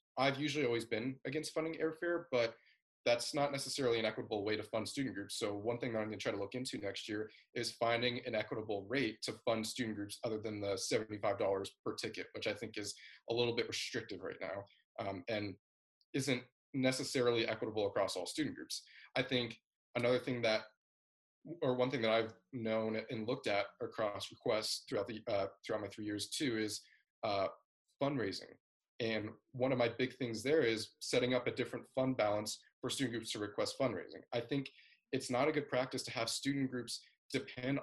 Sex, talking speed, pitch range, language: male, 195 wpm, 110-130 Hz, English